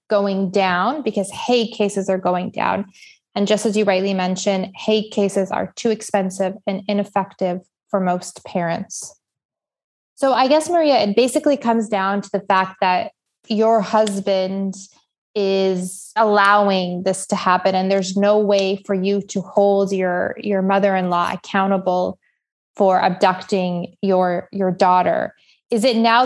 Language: English